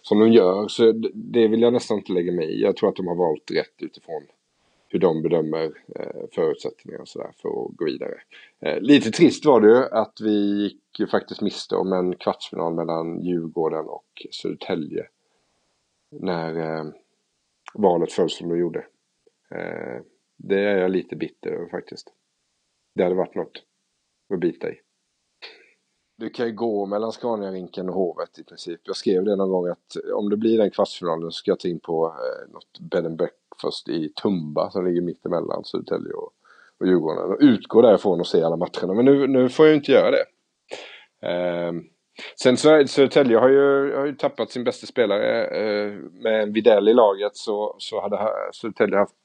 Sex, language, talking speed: male, Swedish, 170 wpm